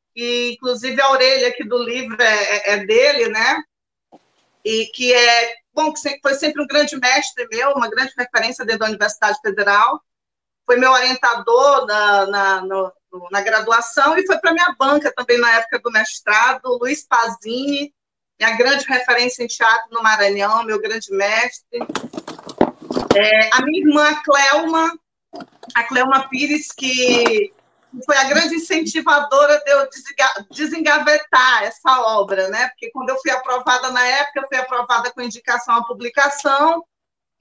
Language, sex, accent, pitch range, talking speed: Portuguese, female, Brazilian, 235-285 Hz, 155 wpm